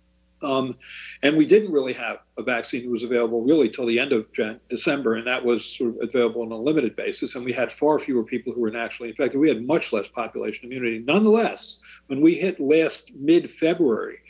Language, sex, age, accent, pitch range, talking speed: English, male, 50-69, American, 120-175 Hz, 210 wpm